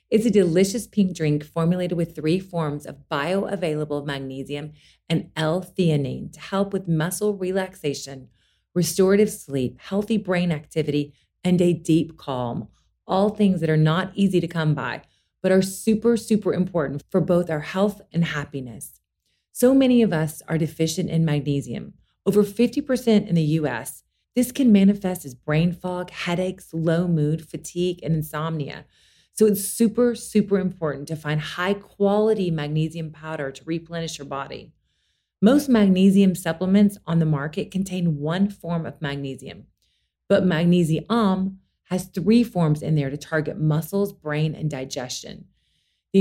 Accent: American